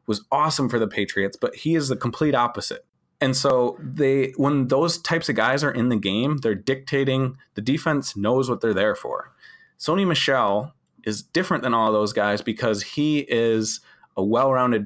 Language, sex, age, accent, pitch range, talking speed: English, male, 30-49, American, 110-135 Hz, 180 wpm